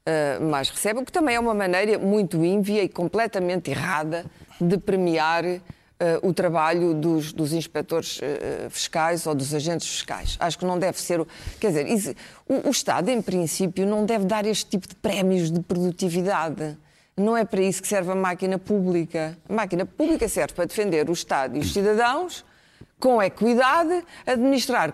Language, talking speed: Portuguese, 180 wpm